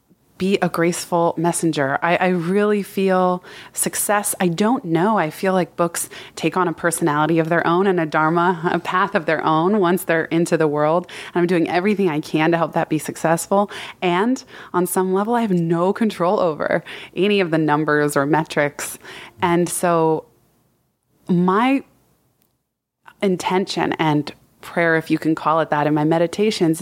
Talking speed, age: 170 wpm, 20-39